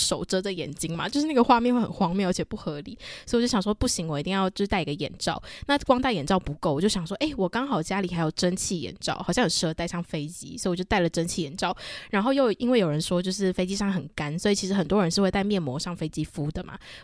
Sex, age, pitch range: female, 20-39, 170-220 Hz